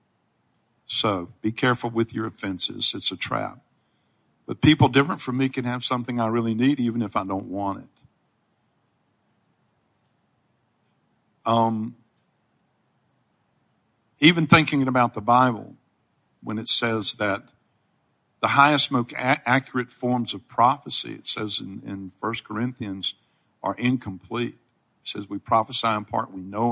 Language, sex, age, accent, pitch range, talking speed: English, male, 50-69, American, 105-130 Hz, 130 wpm